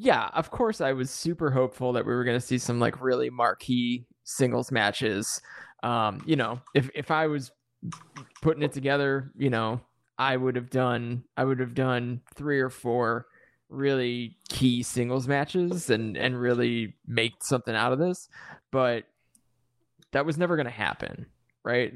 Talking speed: 170 wpm